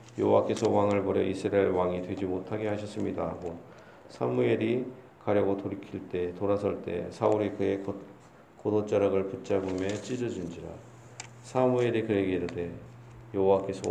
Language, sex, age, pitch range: Korean, male, 40-59, 95-115 Hz